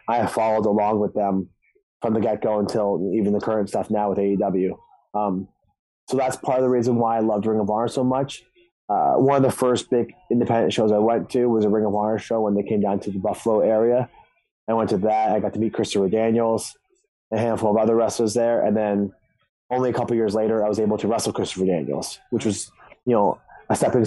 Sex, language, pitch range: male, English, 105-125 Hz